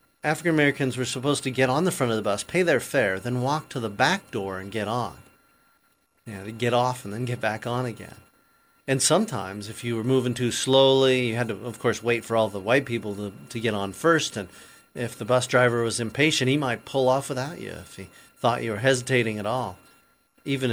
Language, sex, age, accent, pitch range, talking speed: English, male, 40-59, American, 110-135 Hz, 230 wpm